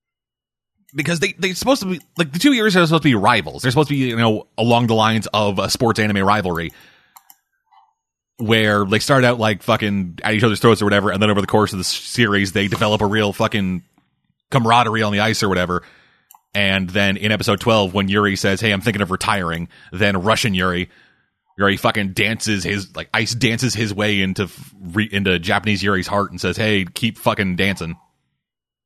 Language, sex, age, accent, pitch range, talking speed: English, male, 30-49, American, 100-140 Hz, 200 wpm